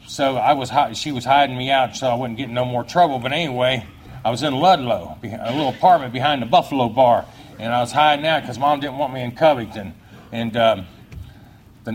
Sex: male